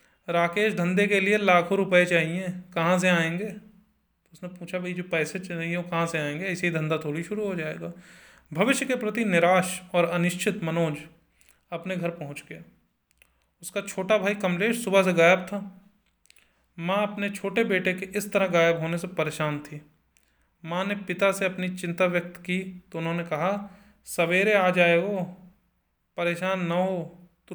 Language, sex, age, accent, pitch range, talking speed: Hindi, male, 30-49, native, 155-190 Hz, 165 wpm